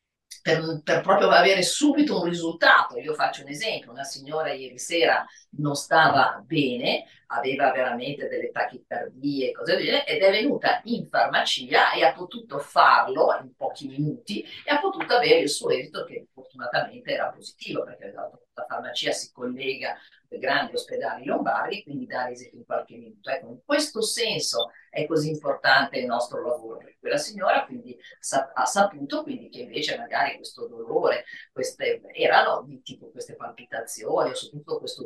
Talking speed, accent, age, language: 160 wpm, native, 50-69, Italian